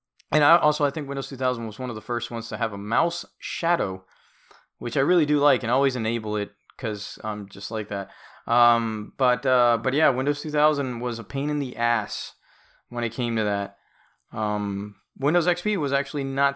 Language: English